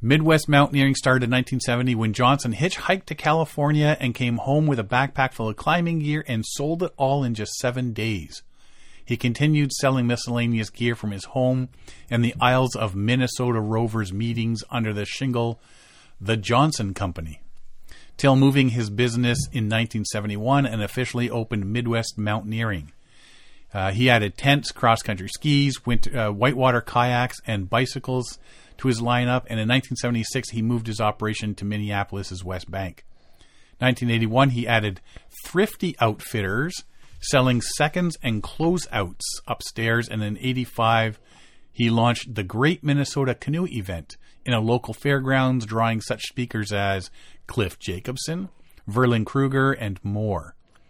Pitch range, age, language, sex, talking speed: 110-135 Hz, 40-59, English, male, 140 wpm